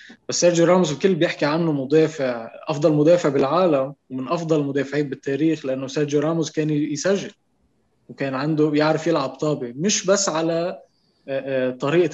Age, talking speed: 20-39, 140 wpm